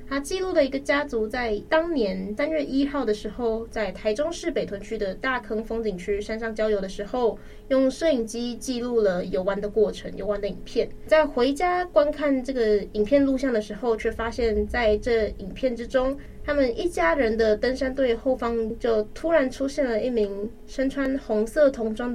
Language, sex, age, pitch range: Chinese, female, 20-39, 210-275 Hz